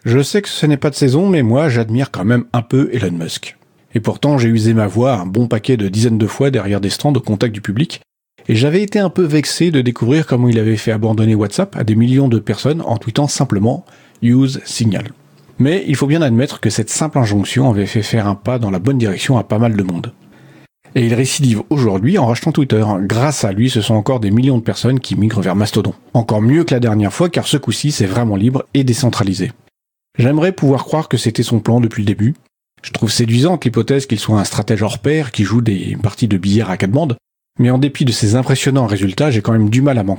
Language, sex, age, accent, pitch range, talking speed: French, male, 40-59, French, 110-135 Hz, 245 wpm